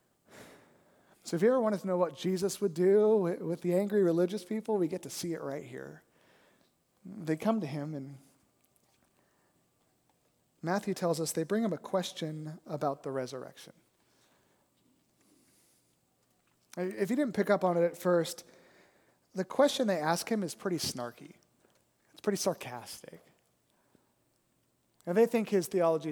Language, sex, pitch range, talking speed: English, male, 165-245 Hz, 145 wpm